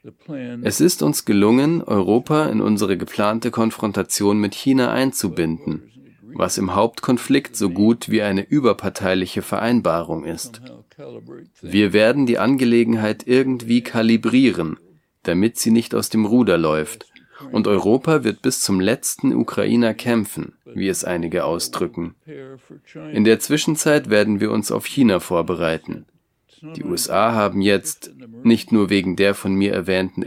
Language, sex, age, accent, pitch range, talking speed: English, male, 30-49, German, 95-115 Hz, 135 wpm